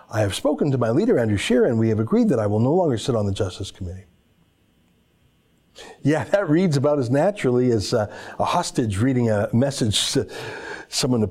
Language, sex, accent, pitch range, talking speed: English, male, American, 120-165 Hz, 200 wpm